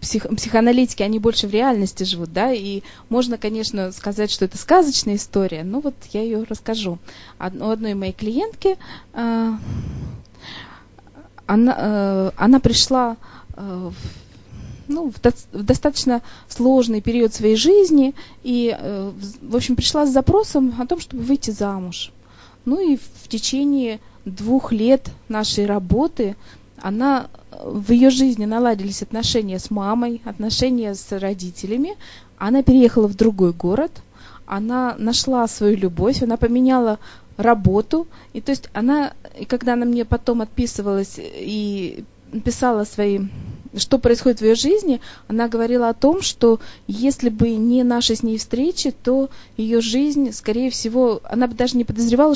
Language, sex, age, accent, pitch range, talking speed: Russian, female, 20-39, native, 210-255 Hz, 135 wpm